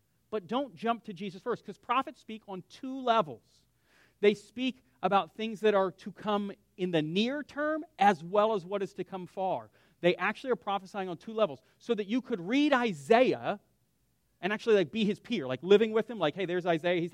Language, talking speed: English, 210 wpm